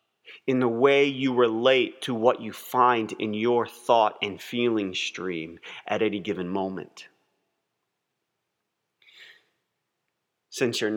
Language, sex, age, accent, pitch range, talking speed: English, male, 30-49, American, 110-130 Hz, 115 wpm